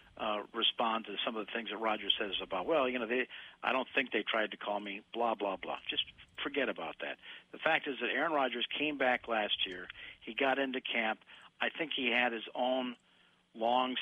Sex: male